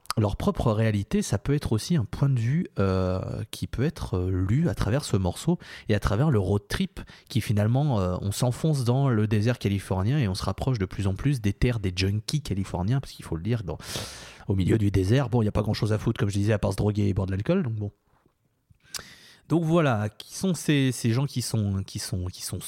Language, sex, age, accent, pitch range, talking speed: French, male, 30-49, French, 100-135 Hz, 245 wpm